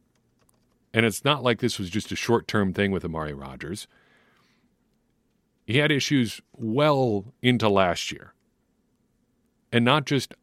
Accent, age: American, 50-69